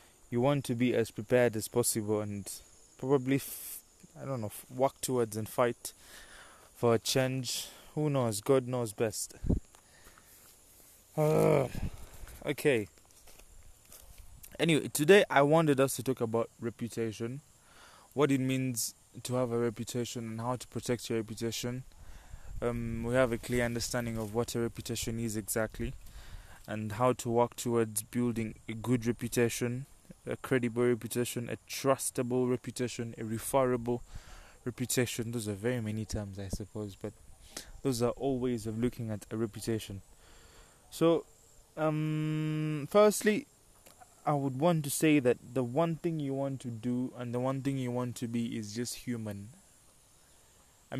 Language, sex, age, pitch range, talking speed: English, male, 20-39, 115-130 Hz, 150 wpm